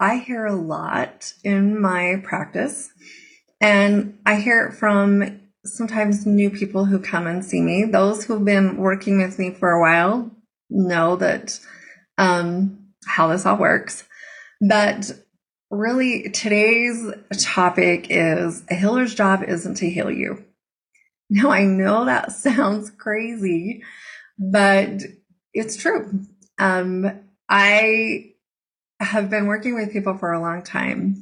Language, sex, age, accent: English, female, 30-49, American